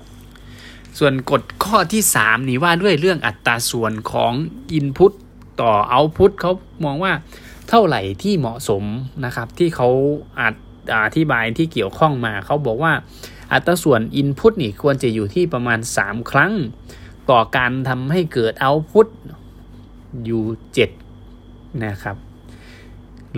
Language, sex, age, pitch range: Thai, male, 20-39, 115-160 Hz